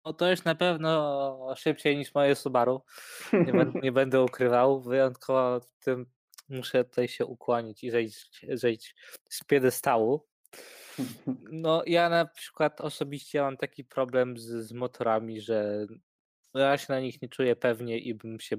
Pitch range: 120-140 Hz